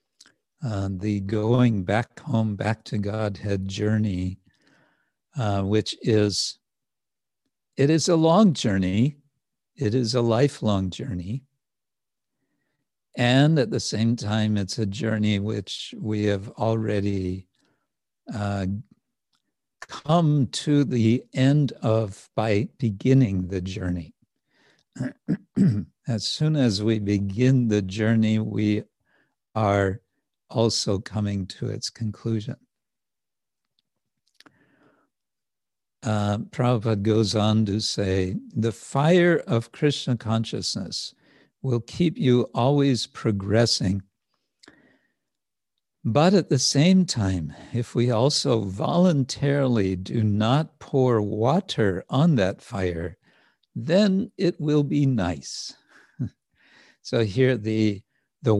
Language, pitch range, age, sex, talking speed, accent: English, 105-135 Hz, 60-79, male, 100 wpm, American